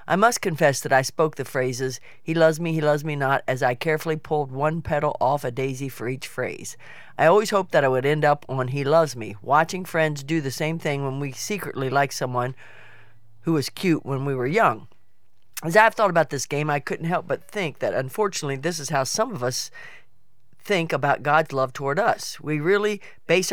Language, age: English, 50-69